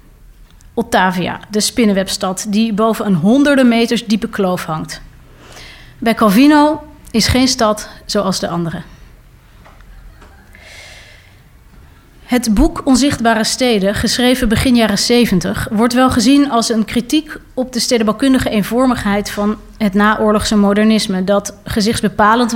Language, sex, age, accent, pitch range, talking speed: English, female, 30-49, Dutch, 205-245 Hz, 115 wpm